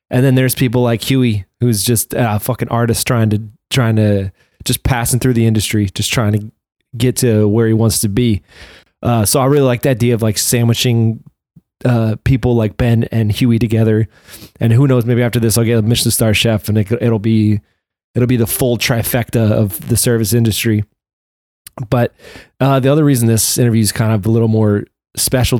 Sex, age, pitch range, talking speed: male, 20-39, 110-125 Hz, 200 wpm